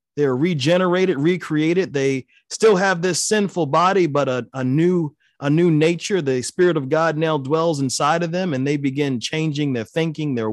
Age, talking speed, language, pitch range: 30-49, 190 wpm, English, 135-180 Hz